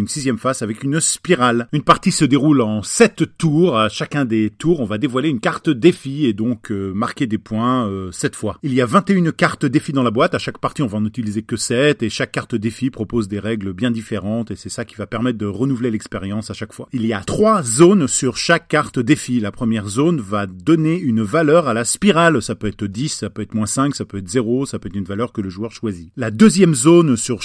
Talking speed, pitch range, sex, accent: 255 wpm, 110-145 Hz, male, French